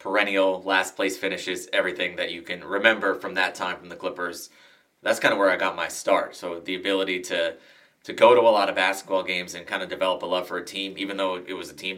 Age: 20-39